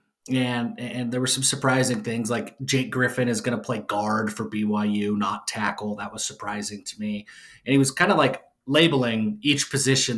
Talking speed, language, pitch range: 195 wpm, English, 115-150 Hz